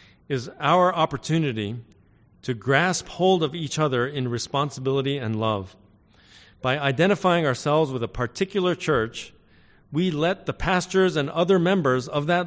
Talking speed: 140 wpm